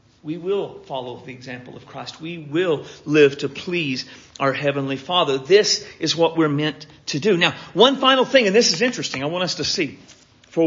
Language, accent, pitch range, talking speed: English, American, 135-185 Hz, 200 wpm